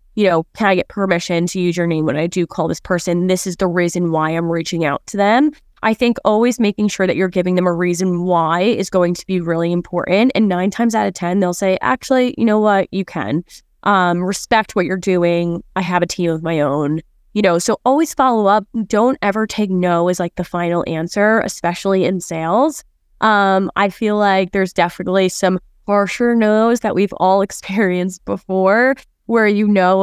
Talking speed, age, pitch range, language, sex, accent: 210 wpm, 20-39, 175-210 Hz, English, female, American